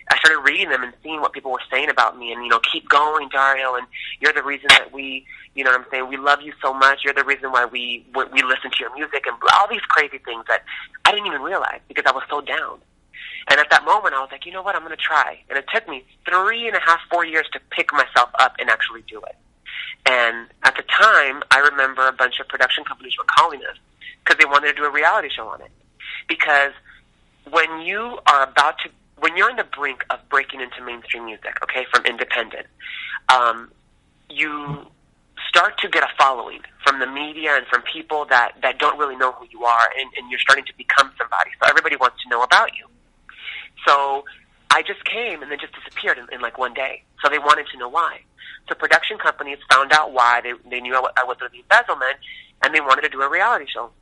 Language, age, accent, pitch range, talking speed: English, 30-49, American, 125-150 Hz, 235 wpm